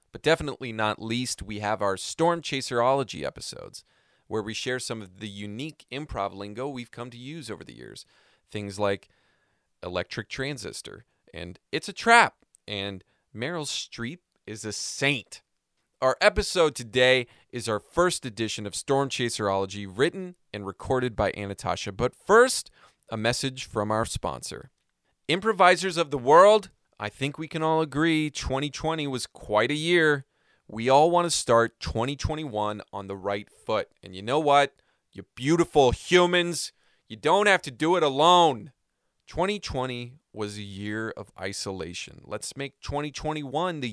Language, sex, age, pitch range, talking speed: English, male, 30-49, 105-150 Hz, 150 wpm